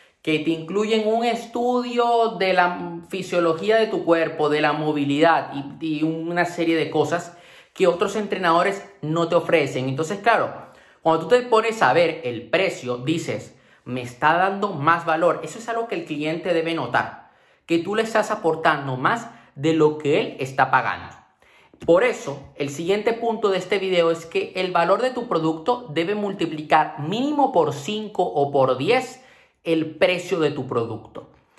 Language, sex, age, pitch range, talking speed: Spanish, male, 30-49, 155-215 Hz, 170 wpm